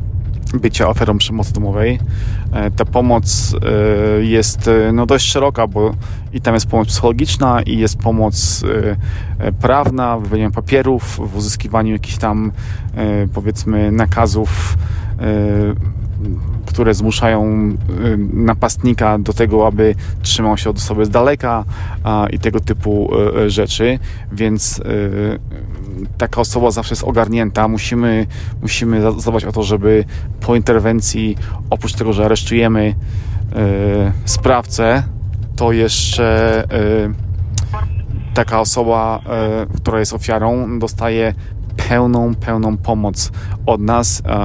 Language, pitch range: Polish, 100-115 Hz